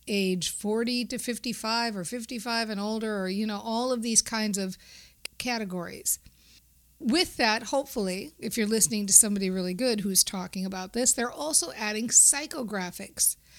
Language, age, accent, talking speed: English, 50-69, American, 155 wpm